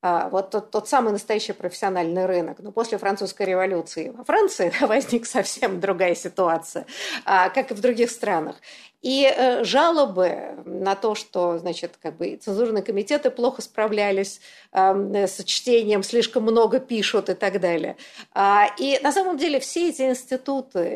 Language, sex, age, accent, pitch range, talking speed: Russian, female, 50-69, native, 190-260 Hz, 140 wpm